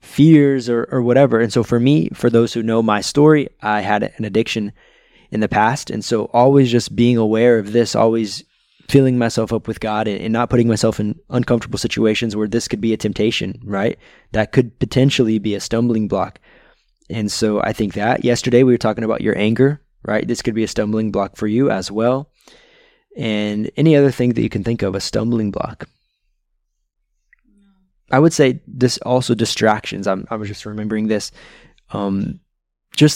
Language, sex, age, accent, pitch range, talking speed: English, male, 20-39, American, 110-125 Hz, 190 wpm